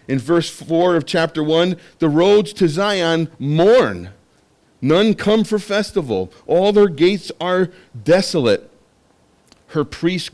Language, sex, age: English, male, 40-59